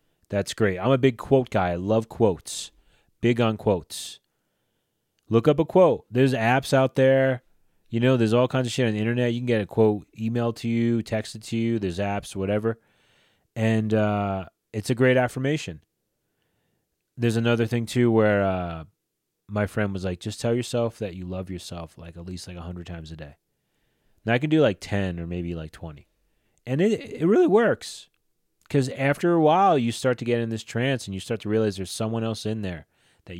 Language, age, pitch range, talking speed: English, 30-49, 100-130 Hz, 205 wpm